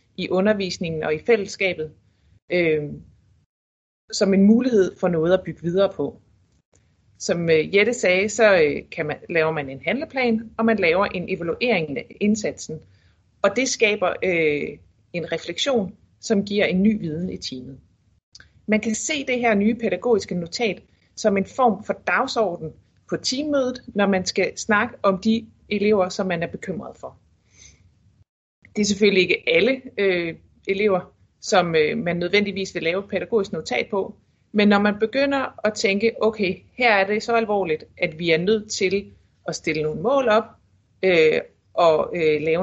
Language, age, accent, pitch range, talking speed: Danish, 30-49, native, 160-220 Hz, 160 wpm